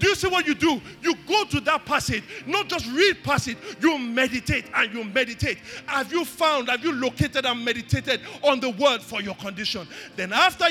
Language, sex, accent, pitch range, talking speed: English, male, Nigerian, 230-290 Hz, 200 wpm